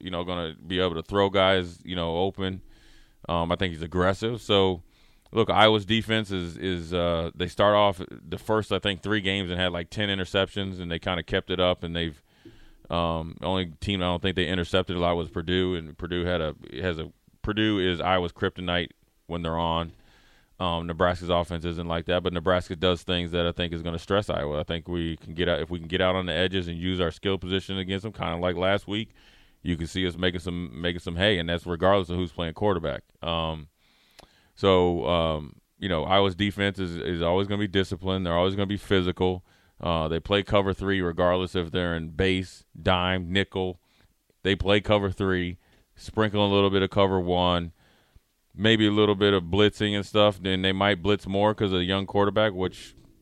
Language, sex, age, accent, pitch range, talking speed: English, male, 30-49, American, 85-100 Hz, 225 wpm